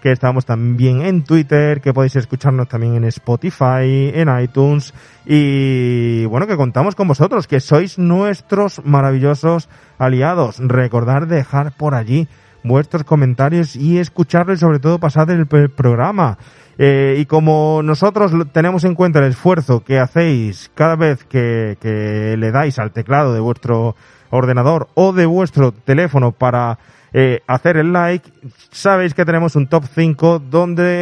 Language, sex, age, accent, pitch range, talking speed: Spanish, male, 30-49, Spanish, 125-160 Hz, 145 wpm